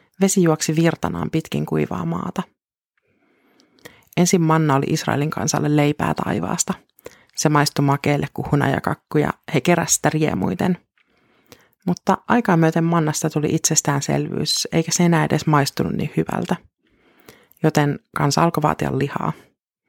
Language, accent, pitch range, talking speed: Finnish, native, 145-170 Hz, 125 wpm